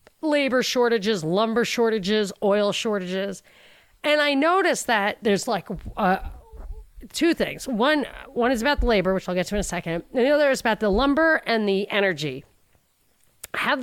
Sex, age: female, 30-49